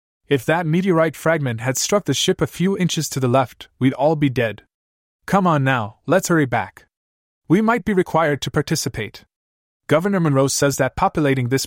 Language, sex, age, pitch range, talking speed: English, male, 20-39, 110-160 Hz, 185 wpm